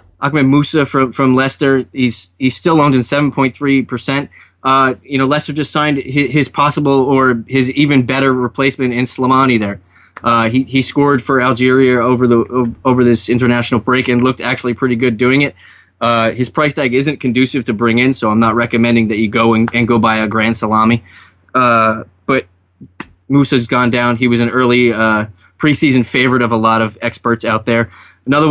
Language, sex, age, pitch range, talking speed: English, male, 20-39, 115-135 Hz, 190 wpm